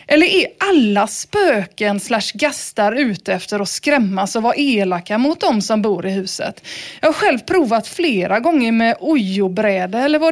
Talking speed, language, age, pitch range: 170 wpm, Swedish, 30-49, 210-290 Hz